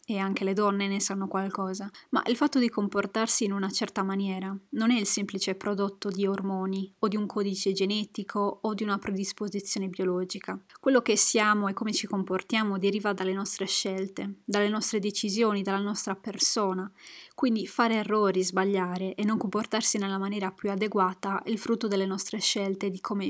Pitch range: 195-215 Hz